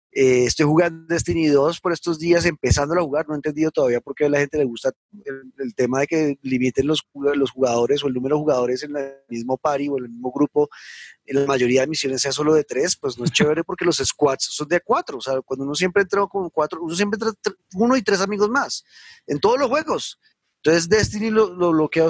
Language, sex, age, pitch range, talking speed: Spanish, male, 30-49, 130-170 Hz, 240 wpm